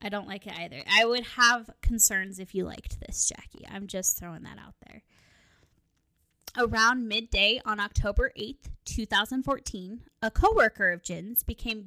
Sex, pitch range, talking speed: female, 200-240 Hz, 155 wpm